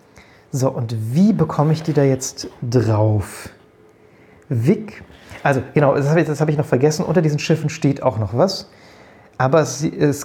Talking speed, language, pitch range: 175 wpm, German, 125-160 Hz